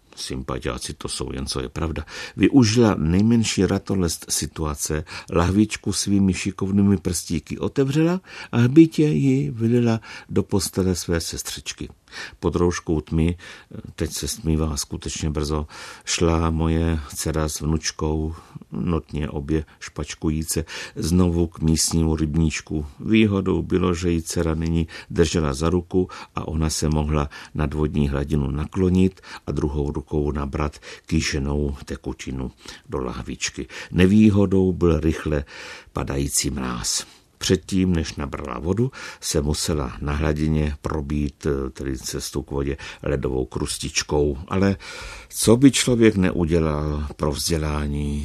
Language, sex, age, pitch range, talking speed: Czech, male, 60-79, 75-95 Hz, 120 wpm